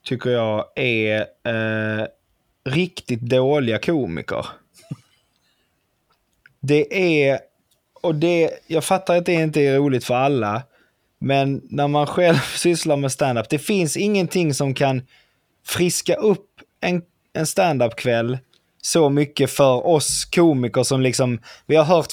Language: Swedish